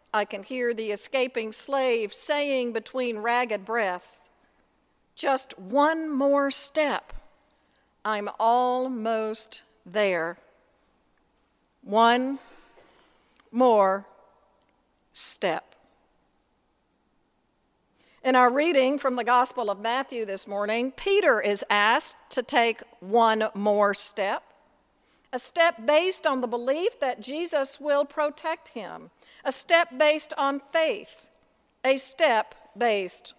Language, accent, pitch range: English, American, 225-300 Hz